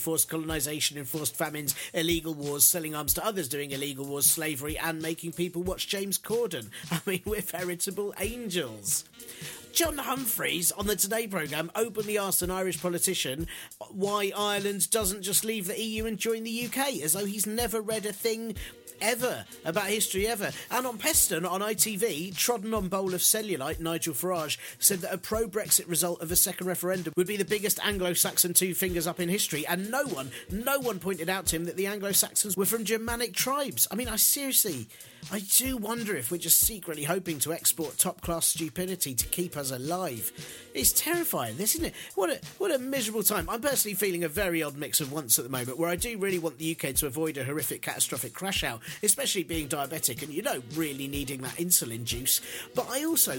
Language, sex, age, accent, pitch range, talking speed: English, male, 40-59, British, 155-210 Hz, 195 wpm